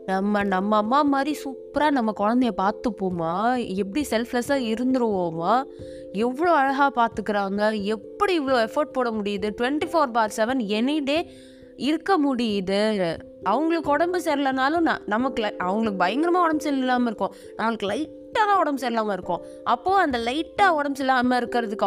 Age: 20-39